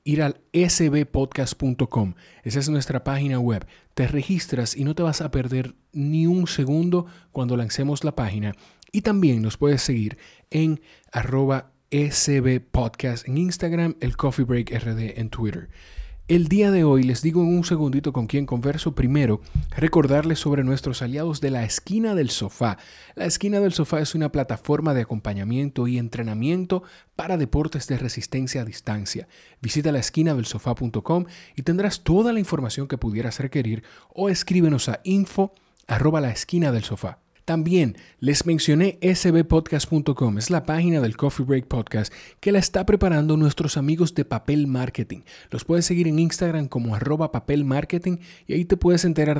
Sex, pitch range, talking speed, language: male, 120-165 Hz, 160 wpm, Spanish